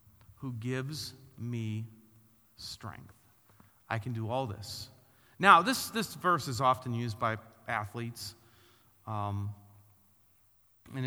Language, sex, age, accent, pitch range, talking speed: English, male, 40-59, American, 105-135 Hz, 110 wpm